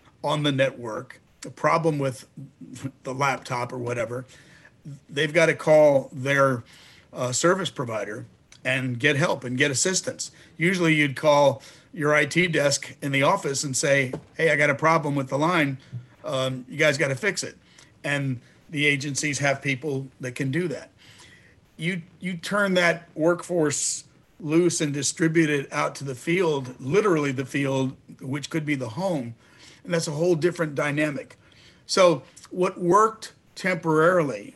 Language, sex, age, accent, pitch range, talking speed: English, male, 50-69, American, 135-160 Hz, 155 wpm